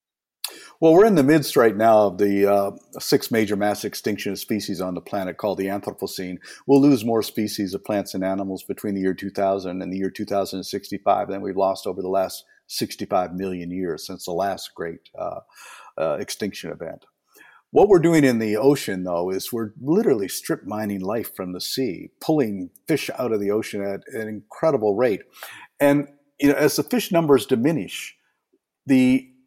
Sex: male